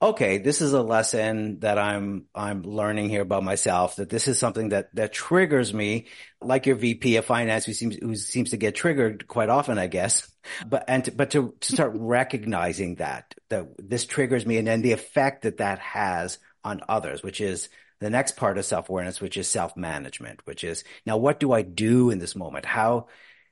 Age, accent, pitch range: 50-69, American, 105-145 Hz